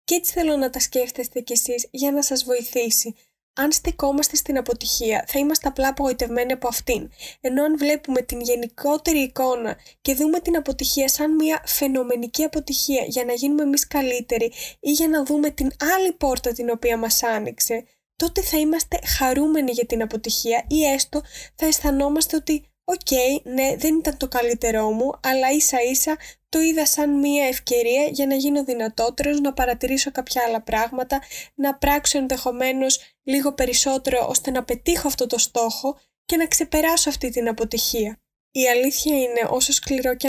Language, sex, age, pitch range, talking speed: Greek, female, 20-39, 245-290 Hz, 165 wpm